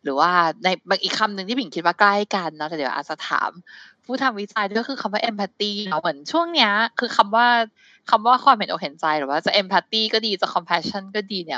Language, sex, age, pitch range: Thai, female, 20-39, 160-220 Hz